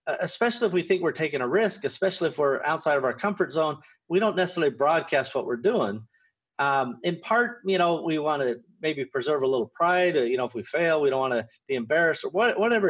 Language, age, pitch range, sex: English, 30-49, 130-185 Hz, male